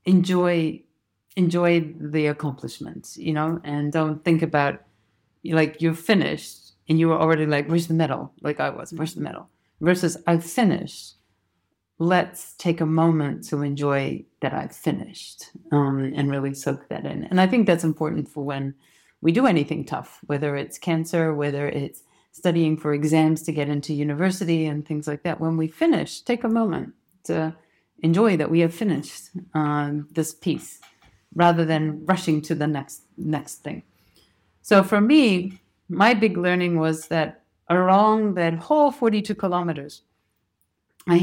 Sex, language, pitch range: female, English, 150-180 Hz